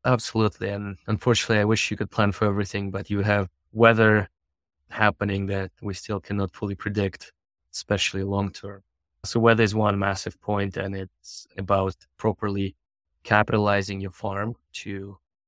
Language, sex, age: English, male, 20-39